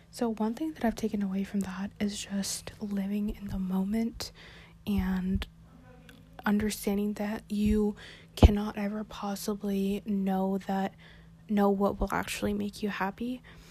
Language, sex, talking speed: English, female, 135 wpm